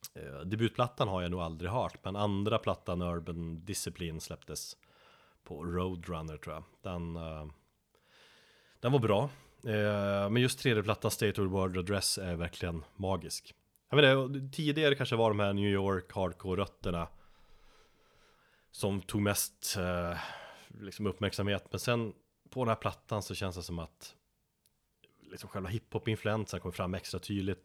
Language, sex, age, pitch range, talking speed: Swedish, male, 30-49, 90-110 Hz, 145 wpm